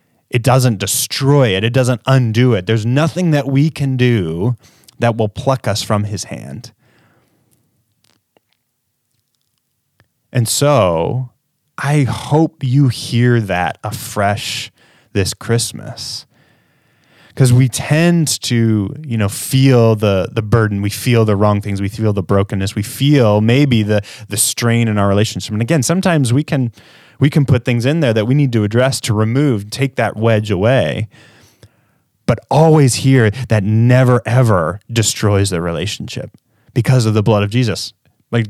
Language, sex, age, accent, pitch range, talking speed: English, male, 20-39, American, 110-135 Hz, 150 wpm